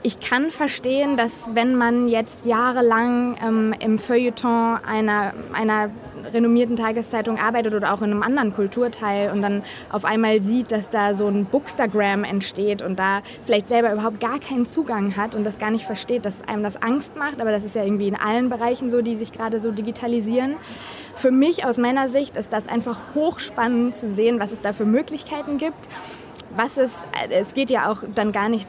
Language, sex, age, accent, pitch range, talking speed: German, female, 20-39, German, 205-240 Hz, 190 wpm